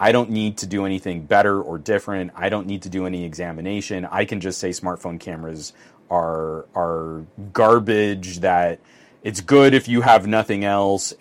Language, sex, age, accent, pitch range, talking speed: English, male, 30-49, American, 90-115 Hz, 175 wpm